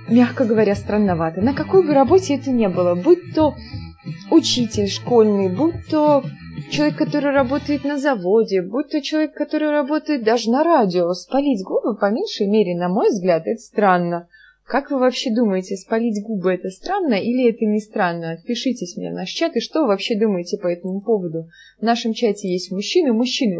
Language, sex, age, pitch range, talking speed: Russian, female, 20-39, 190-280 Hz, 180 wpm